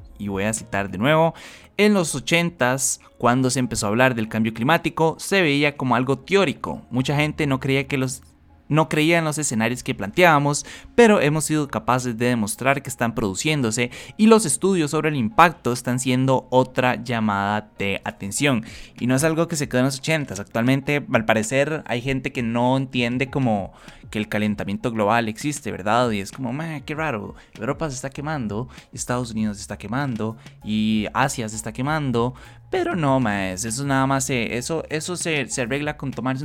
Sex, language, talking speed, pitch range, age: male, Spanish, 190 wpm, 115-150 Hz, 20-39